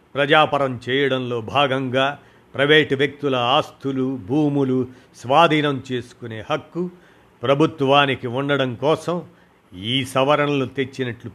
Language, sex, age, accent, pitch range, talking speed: Telugu, male, 50-69, native, 125-145 Hz, 85 wpm